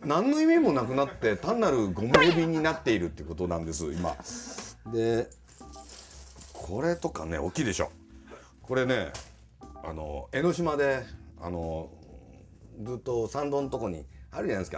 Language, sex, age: Japanese, male, 40-59